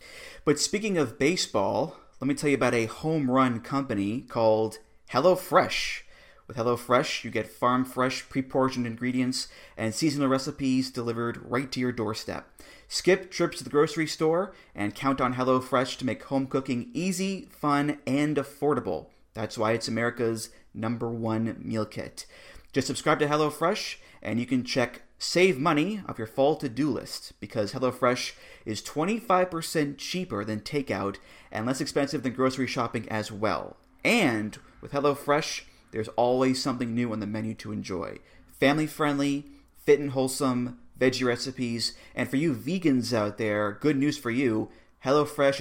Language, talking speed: English, 150 wpm